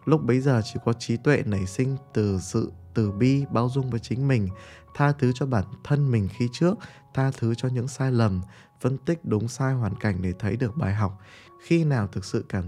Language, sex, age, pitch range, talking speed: Vietnamese, male, 20-39, 100-130 Hz, 225 wpm